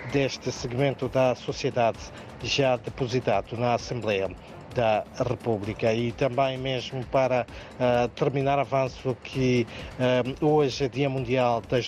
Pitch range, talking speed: 115-135 Hz, 110 wpm